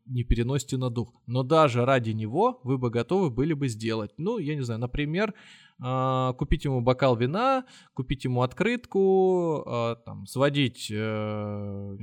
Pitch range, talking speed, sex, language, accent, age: 115-160 Hz, 145 wpm, male, Russian, native, 20-39